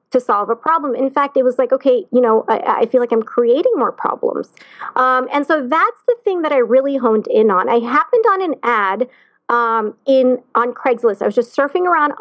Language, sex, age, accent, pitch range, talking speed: English, female, 40-59, American, 230-310 Hz, 225 wpm